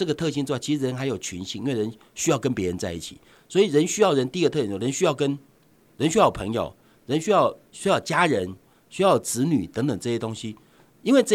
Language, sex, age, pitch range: Chinese, male, 50-69, 105-165 Hz